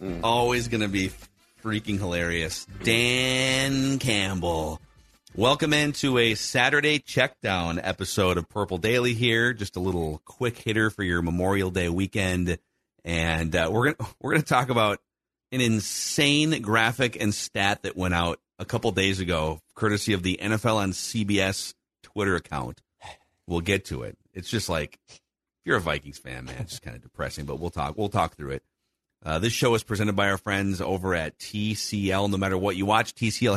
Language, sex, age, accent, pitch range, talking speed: English, male, 40-59, American, 95-115 Hz, 175 wpm